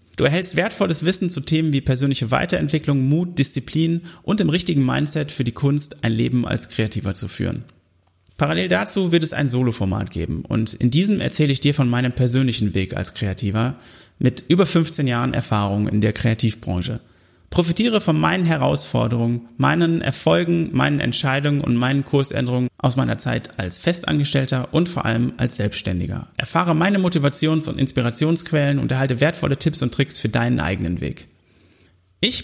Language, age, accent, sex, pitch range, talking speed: German, 30-49, German, male, 115-155 Hz, 165 wpm